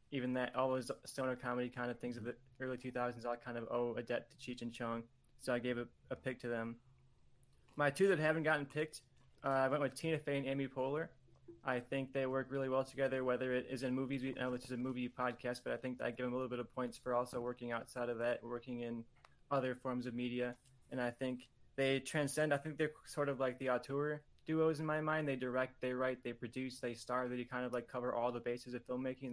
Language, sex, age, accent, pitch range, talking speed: English, male, 20-39, American, 120-135 Hz, 250 wpm